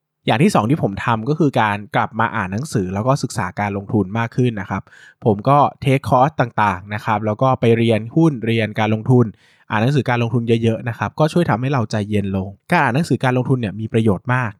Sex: male